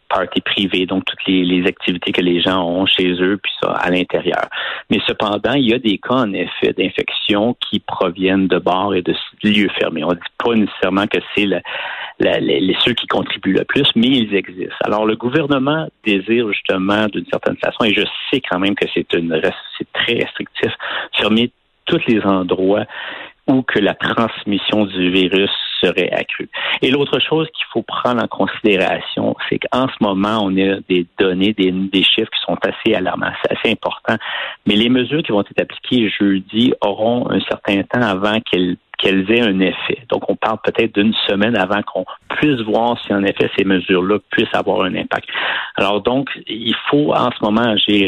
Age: 50-69